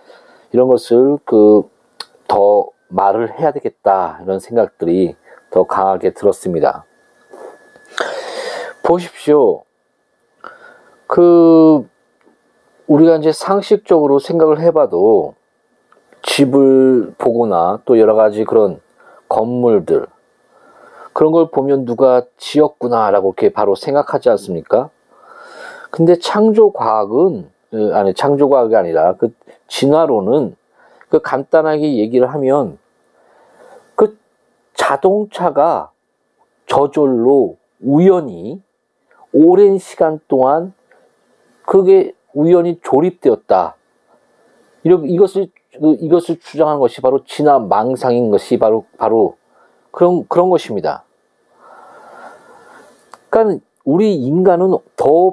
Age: 40-59